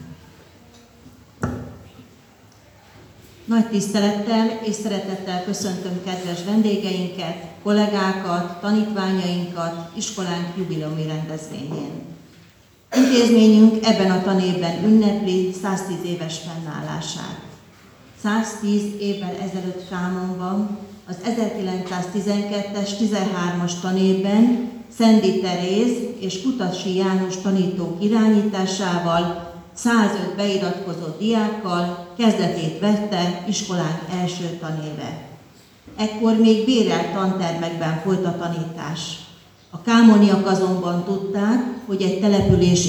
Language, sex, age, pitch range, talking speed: Hungarian, female, 40-59, 175-210 Hz, 80 wpm